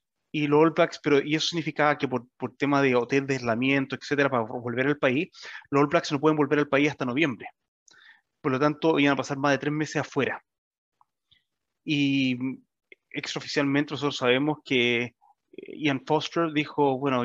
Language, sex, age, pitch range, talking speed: Spanish, male, 30-49, 140-165 Hz, 175 wpm